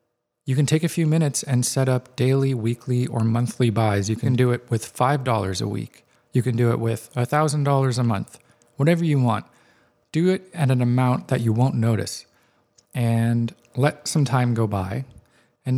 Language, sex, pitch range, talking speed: English, male, 115-135 Hz, 195 wpm